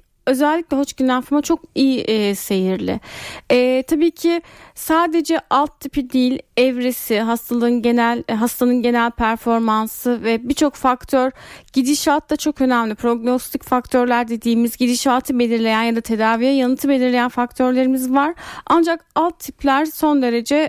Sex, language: female, Turkish